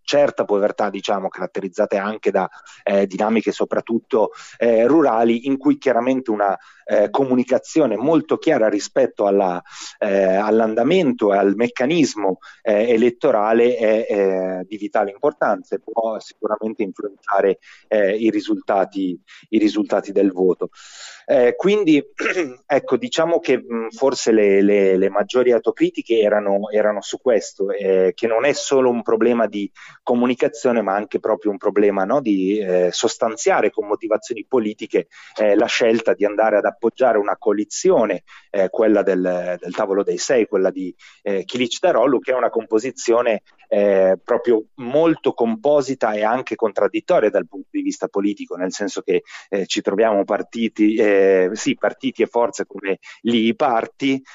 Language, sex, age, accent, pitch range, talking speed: Italian, male, 30-49, native, 100-135 Hz, 145 wpm